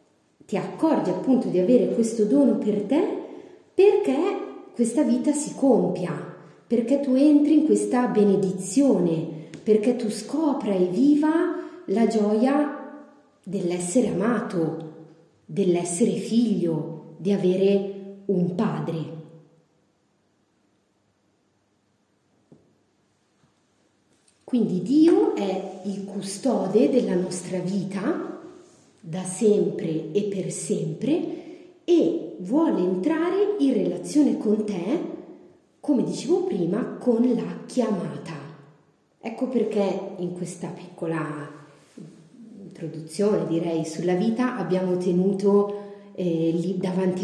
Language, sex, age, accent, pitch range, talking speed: Italian, female, 40-59, native, 180-250 Hz, 95 wpm